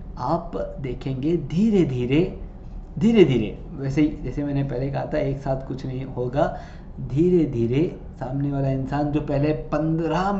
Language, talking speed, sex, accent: Hindi, 145 wpm, male, native